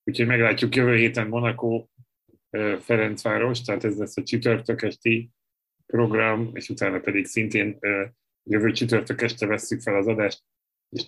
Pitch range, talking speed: 105-120 Hz, 135 wpm